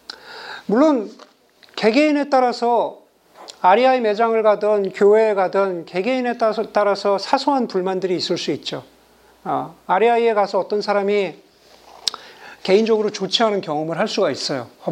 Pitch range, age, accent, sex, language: 180-250 Hz, 40-59, native, male, Korean